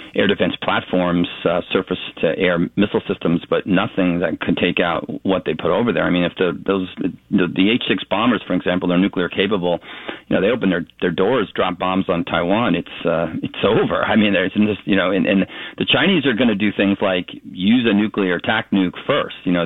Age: 40-59